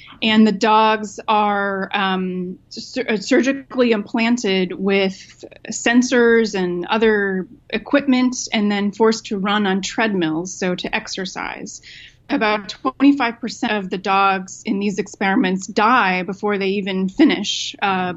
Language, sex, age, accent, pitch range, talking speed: English, female, 20-39, American, 185-225 Hz, 120 wpm